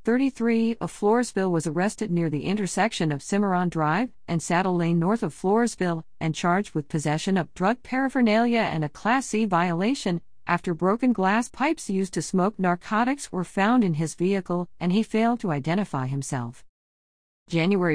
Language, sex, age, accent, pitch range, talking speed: English, female, 50-69, American, 150-205 Hz, 165 wpm